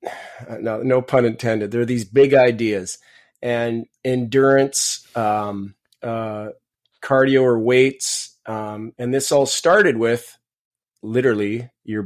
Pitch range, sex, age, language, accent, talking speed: 115-135 Hz, male, 30-49, English, American, 120 wpm